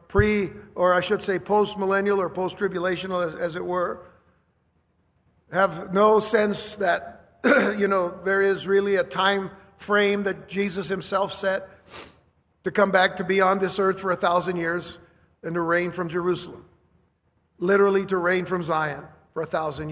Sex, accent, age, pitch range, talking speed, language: male, American, 50-69, 175-205 Hz, 160 wpm, English